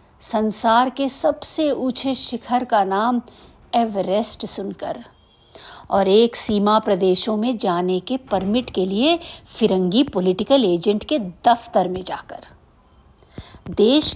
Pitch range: 200-275 Hz